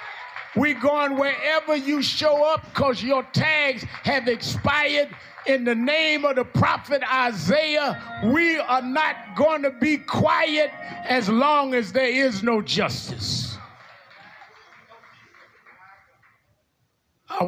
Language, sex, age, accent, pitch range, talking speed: English, male, 50-69, American, 175-260 Hz, 115 wpm